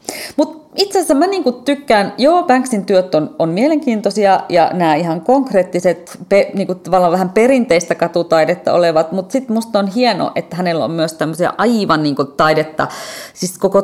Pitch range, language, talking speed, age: 155-215 Hz, Finnish, 165 wpm, 30-49